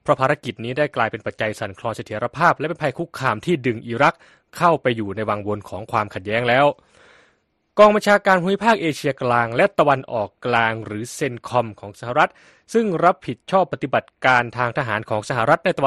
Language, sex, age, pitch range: Thai, male, 20-39, 115-150 Hz